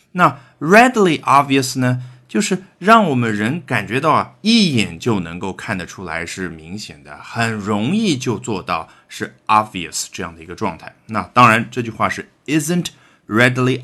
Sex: male